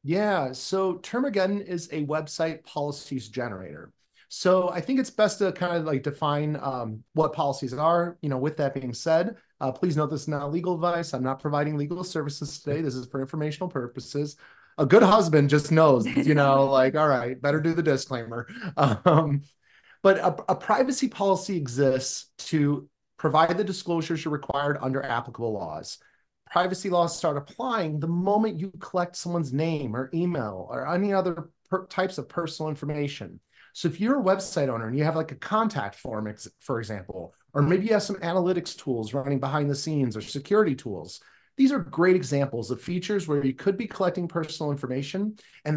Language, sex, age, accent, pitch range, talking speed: English, male, 30-49, American, 135-180 Hz, 180 wpm